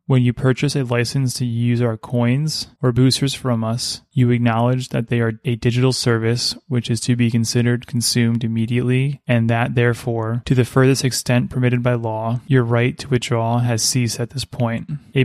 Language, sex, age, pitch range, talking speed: English, male, 20-39, 115-130 Hz, 190 wpm